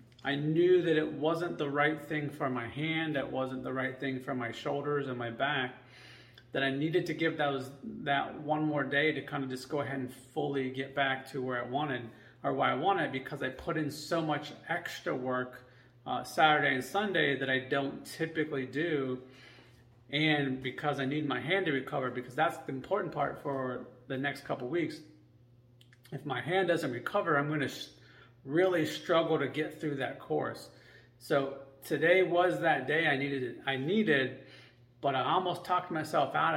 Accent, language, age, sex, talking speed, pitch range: American, English, 30-49, male, 190 wpm, 130-160 Hz